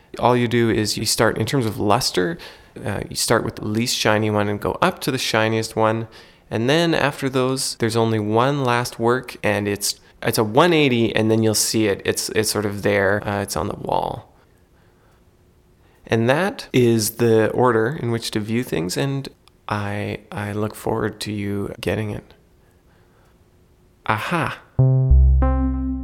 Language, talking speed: English, 170 wpm